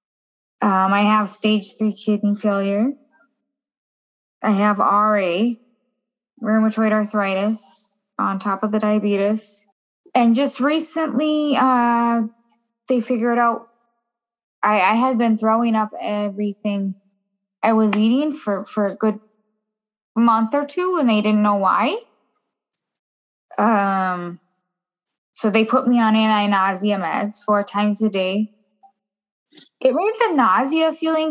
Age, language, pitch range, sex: 10-29, English, 205-250 Hz, female